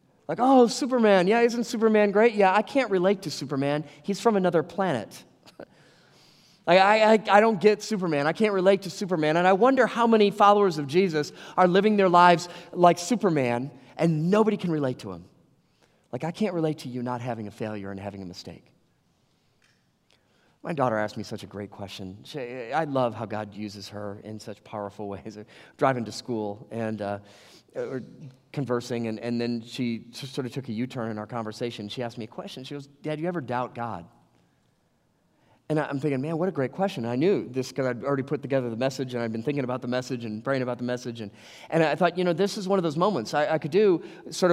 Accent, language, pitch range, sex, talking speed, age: American, English, 120-185 Hz, male, 220 wpm, 30-49